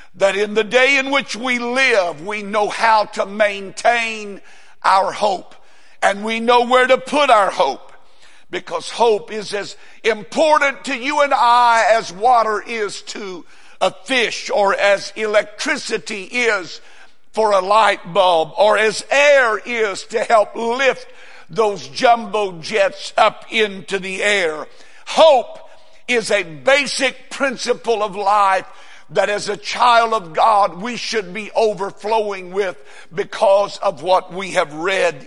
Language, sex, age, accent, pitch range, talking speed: English, male, 60-79, American, 205-255 Hz, 145 wpm